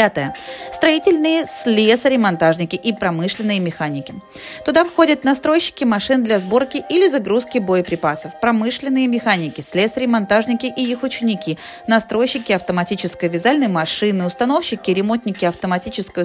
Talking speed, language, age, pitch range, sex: 105 wpm, Russian, 30-49, 175-250 Hz, female